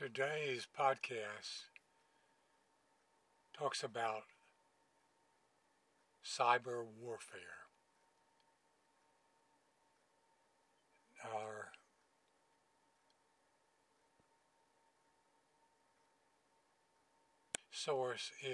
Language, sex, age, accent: English, male, 60-79, American